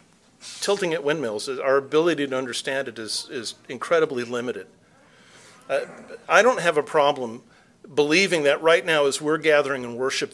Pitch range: 150-220 Hz